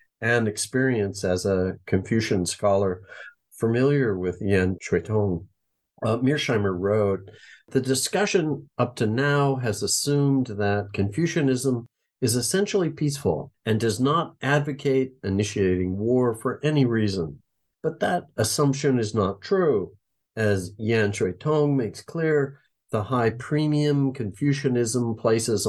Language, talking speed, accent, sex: English, 120 wpm, American, male